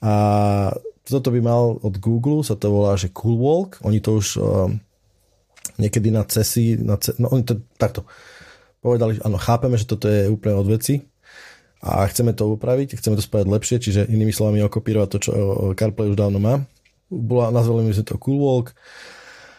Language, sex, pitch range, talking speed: Slovak, male, 105-120 Hz, 185 wpm